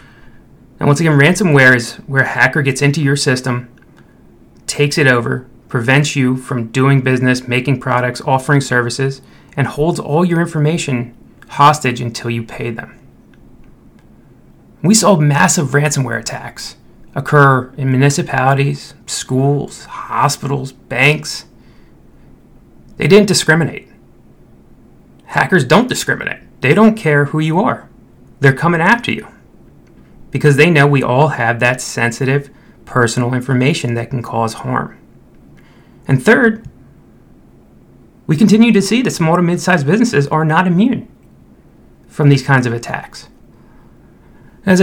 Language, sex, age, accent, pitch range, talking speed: English, male, 30-49, American, 130-170 Hz, 125 wpm